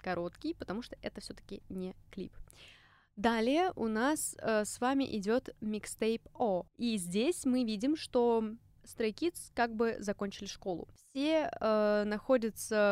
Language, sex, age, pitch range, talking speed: Russian, female, 20-39, 205-265 Hz, 135 wpm